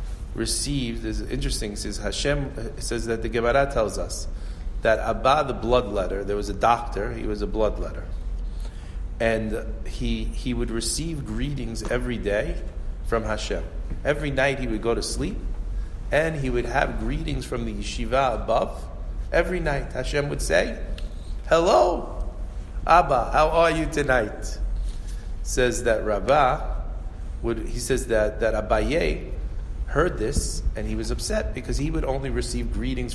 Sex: male